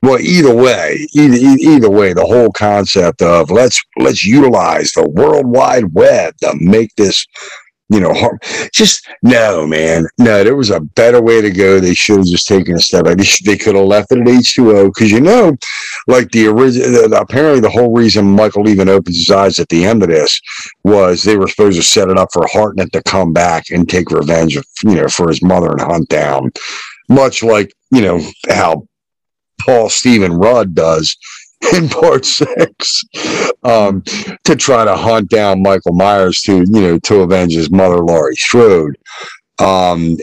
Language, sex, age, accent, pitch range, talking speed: English, male, 50-69, American, 90-115 Hz, 185 wpm